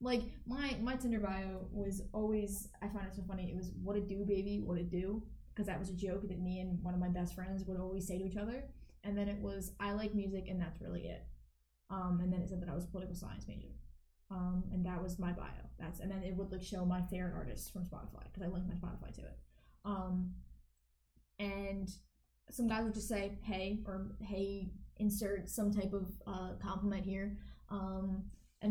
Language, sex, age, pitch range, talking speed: English, female, 10-29, 180-205 Hz, 225 wpm